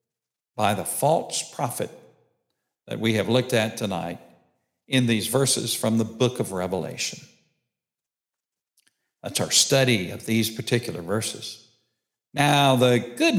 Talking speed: 125 wpm